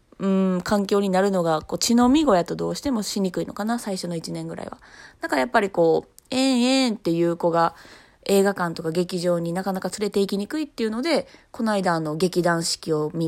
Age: 20-39